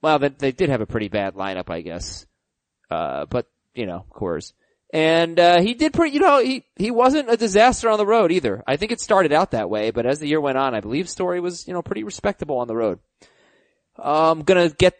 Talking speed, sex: 235 wpm, male